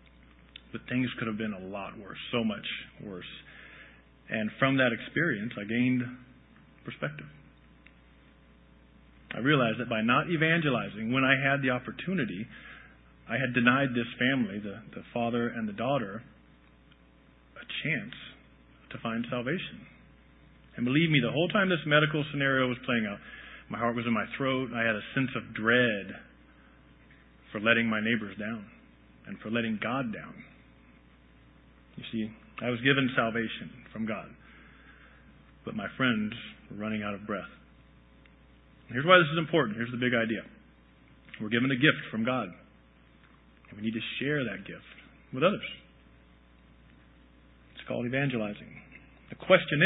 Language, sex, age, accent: English, male, 40-59, American